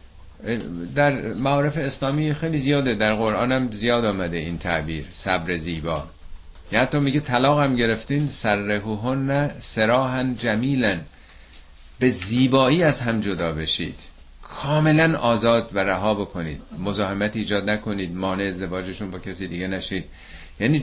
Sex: male